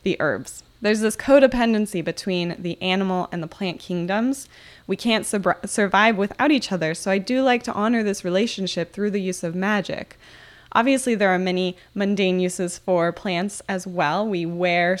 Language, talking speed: English, 170 wpm